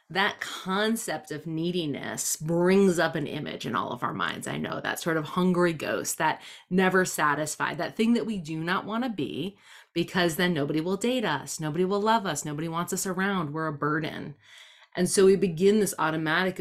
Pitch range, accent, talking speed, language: 150-200 Hz, American, 195 wpm, English